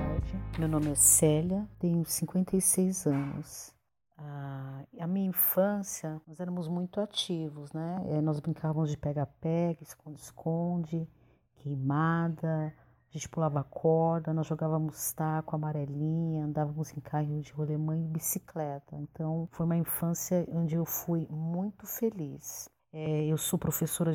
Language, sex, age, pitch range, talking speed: Portuguese, female, 40-59, 150-175 Hz, 125 wpm